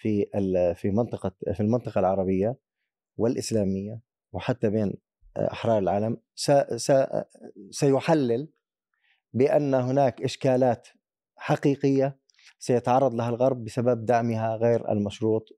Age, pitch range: 30-49, 115-140 Hz